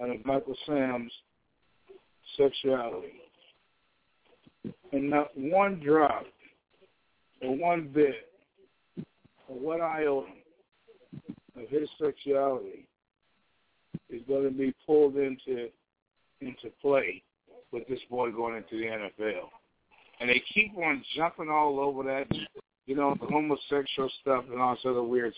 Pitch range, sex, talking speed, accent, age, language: 125-155 Hz, male, 120 wpm, American, 60-79, English